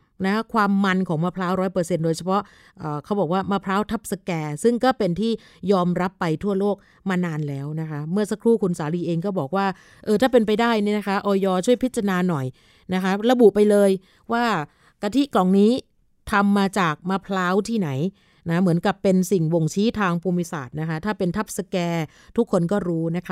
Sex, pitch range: female, 175-210 Hz